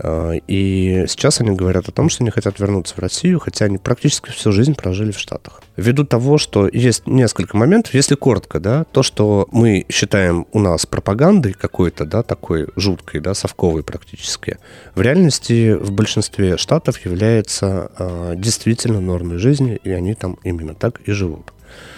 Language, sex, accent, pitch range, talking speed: Russian, male, native, 90-120 Hz, 165 wpm